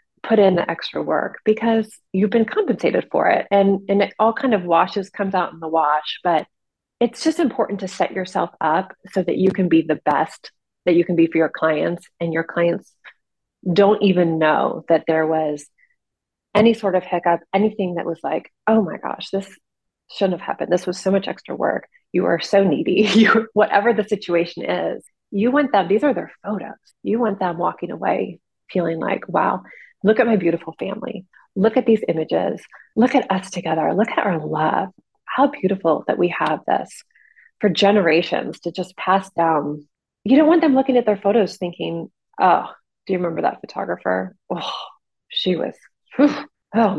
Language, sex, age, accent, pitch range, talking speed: English, female, 30-49, American, 170-220 Hz, 190 wpm